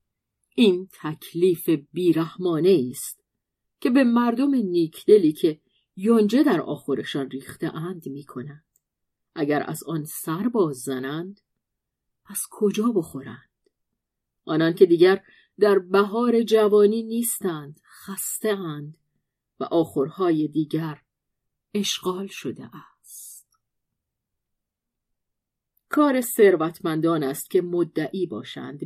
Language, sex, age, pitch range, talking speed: Persian, female, 40-59, 155-220 Hz, 95 wpm